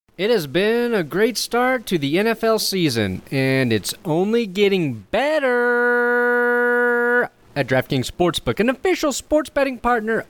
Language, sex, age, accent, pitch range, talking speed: English, male, 30-49, American, 160-235 Hz, 135 wpm